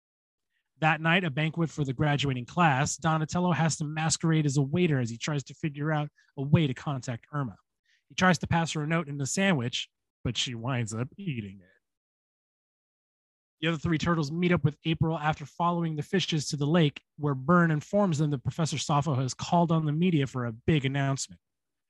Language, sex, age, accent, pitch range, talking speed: English, male, 30-49, American, 130-165 Hz, 200 wpm